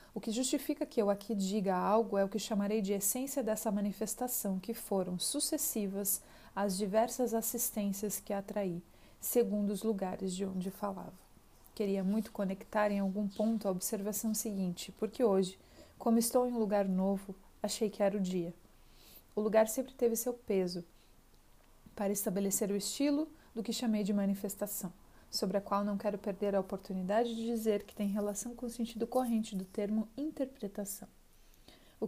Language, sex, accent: Portuguese, female, Brazilian